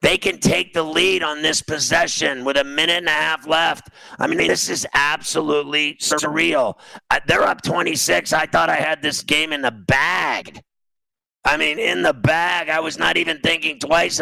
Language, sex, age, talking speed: English, male, 50-69, 185 wpm